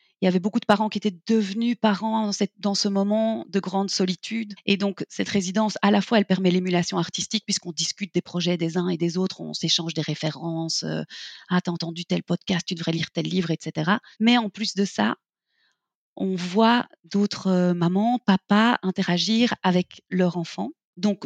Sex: female